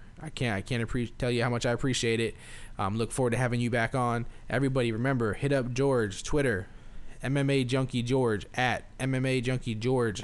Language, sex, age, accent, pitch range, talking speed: English, male, 20-39, American, 110-130 Hz, 190 wpm